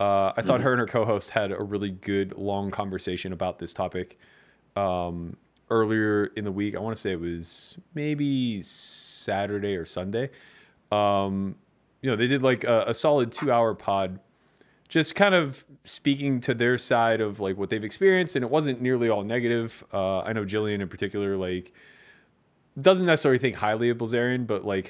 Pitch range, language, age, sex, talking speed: 95-120 Hz, English, 30-49, male, 185 wpm